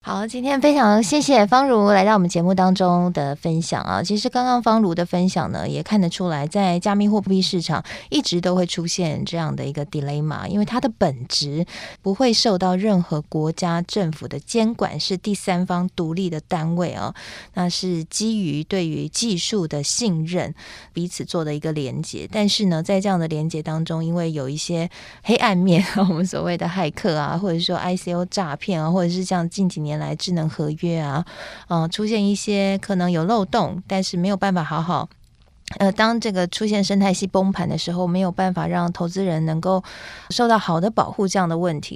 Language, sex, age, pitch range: Chinese, female, 20-39, 165-205 Hz